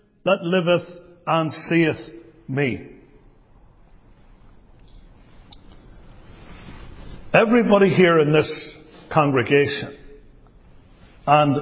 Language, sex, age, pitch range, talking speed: English, male, 60-79, 150-195 Hz, 55 wpm